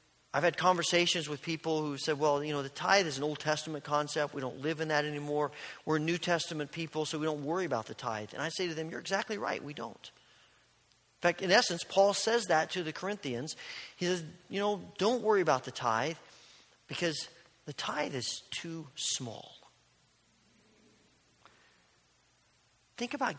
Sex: male